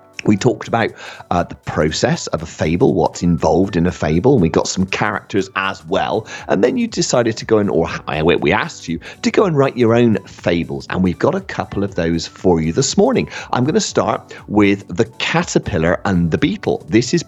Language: English